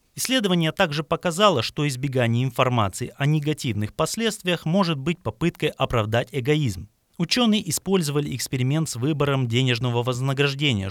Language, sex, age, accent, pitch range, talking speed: Russian, male, 30-49, native, 115-165 Hz, 115 wpm